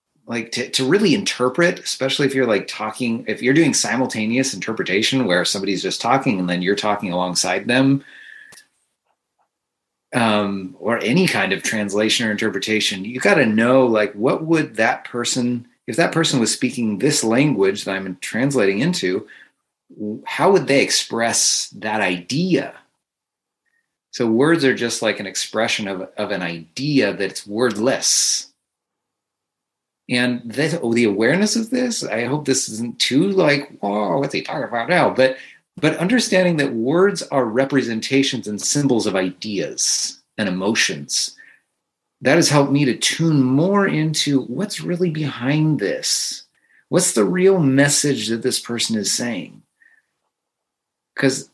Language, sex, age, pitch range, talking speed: English, male, 30-49, 110-145 Hz, 145 wpm